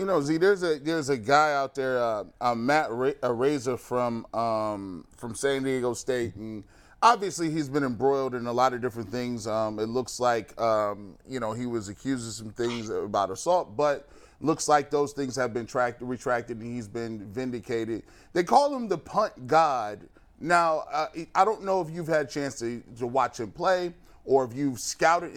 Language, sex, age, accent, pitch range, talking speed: English, male, 30-49, American, 120-150 Hz, 200 wpm